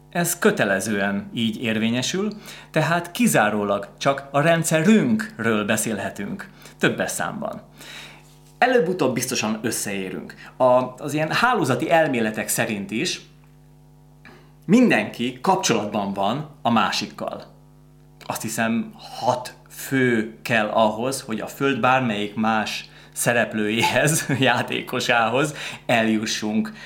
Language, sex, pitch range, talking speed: Hungarian, male, 110-155 Hz, 90 wpm